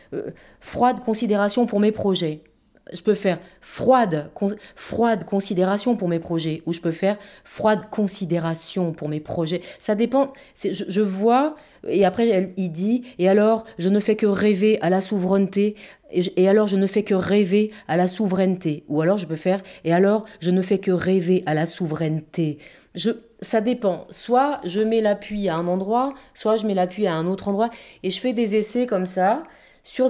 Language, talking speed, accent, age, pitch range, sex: French, 195 wpm, French, 30-49, 175-215 Hz, female